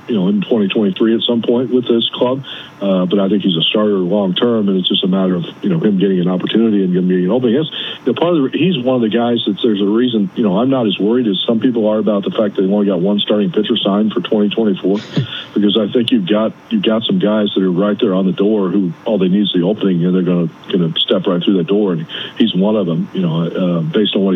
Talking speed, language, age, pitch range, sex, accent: 285 wpm, English, 40-59, 95-110 Hz, male, American